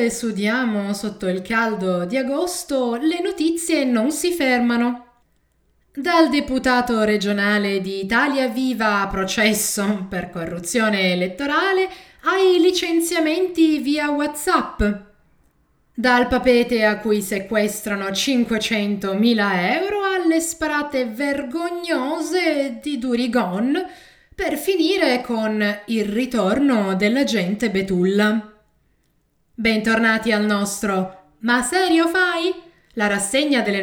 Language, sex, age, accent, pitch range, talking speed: Italian, female, 20-39, native, 210-315 Hz, 95 wpm